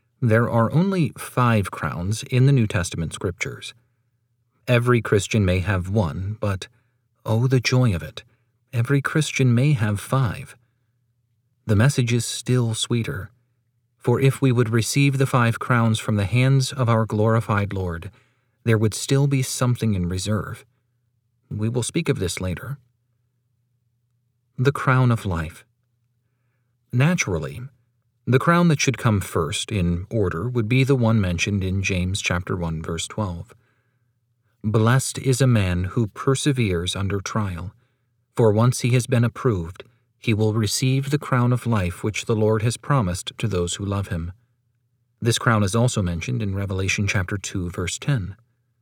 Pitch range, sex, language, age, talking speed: 105-125 Hz, male, English, 40-59, 155 wpm